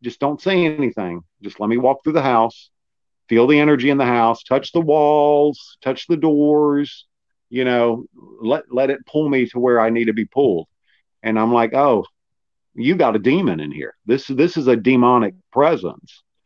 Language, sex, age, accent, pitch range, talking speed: English, male, 50-69, American, 115-150 Hz, 195 wpm